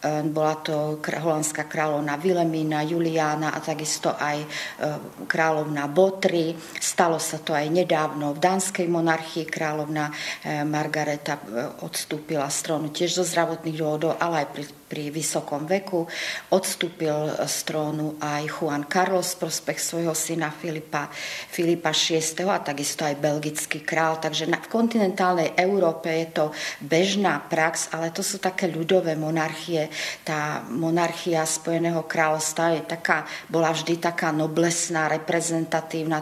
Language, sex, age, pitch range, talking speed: Slovak, female, 40-59, 155-170 Hz, 120 wpm